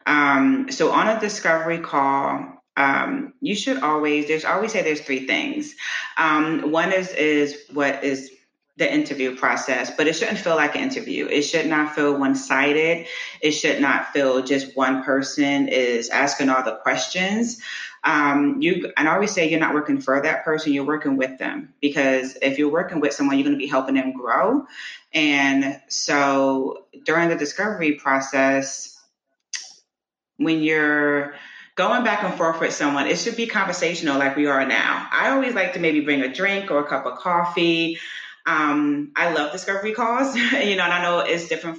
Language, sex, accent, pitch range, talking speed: English, female, American, 140-175 Hz, 180 wpm